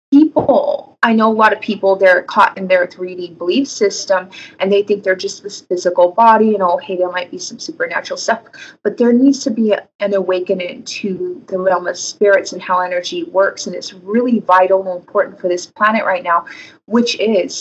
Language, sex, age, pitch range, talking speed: English, female, 20-39, 185-230 Hz, 205 wpm